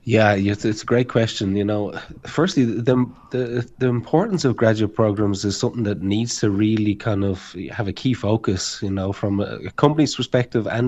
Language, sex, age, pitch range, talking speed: English, male, 30-49, 105-125 Hz, 190 wpm